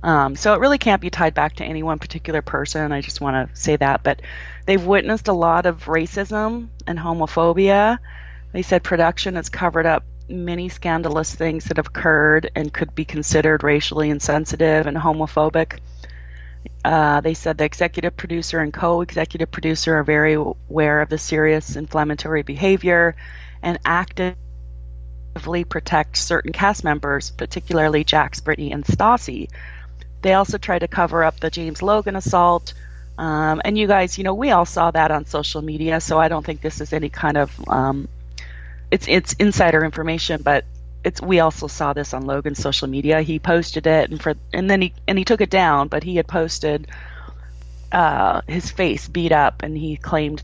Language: English